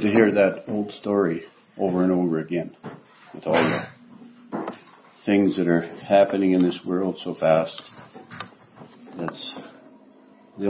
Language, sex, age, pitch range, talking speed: English, male, 60-79, 85-115 Hz, 130 wpm